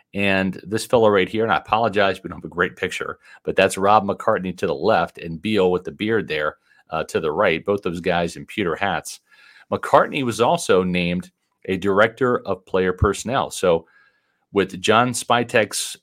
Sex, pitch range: male, 95-110 Hz